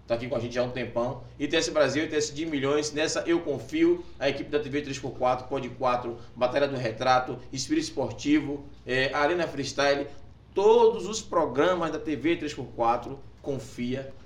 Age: 20-39